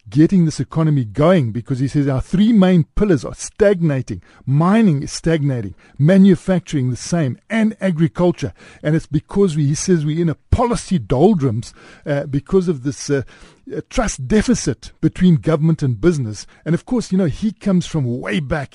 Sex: male